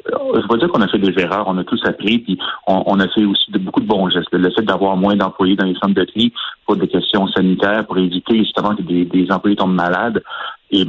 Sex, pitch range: male, 90-105 Hz